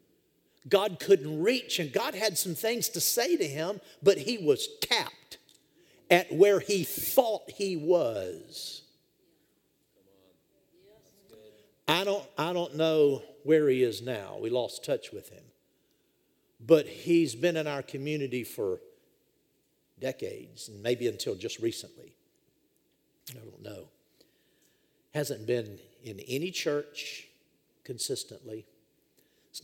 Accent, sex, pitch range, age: American, male, 120-195 Hz, 50-69